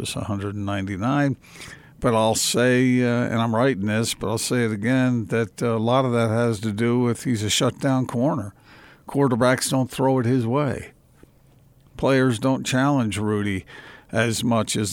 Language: English